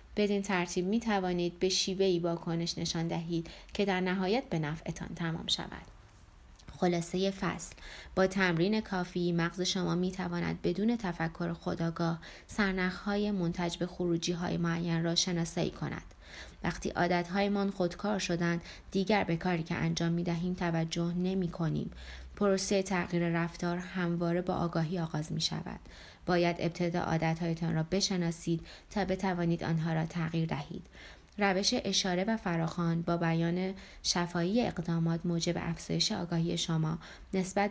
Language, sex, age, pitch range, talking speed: Persian, female, 20-39, 165-185 Hz, 140 wpm